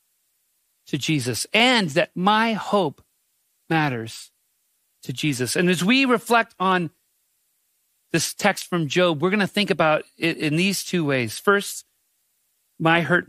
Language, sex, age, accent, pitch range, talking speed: English, male, 40-59, American, 170-235 Hz, 140 wpm